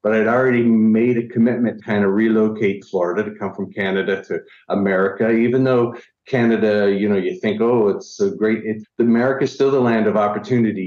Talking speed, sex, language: 195 wpm, male, English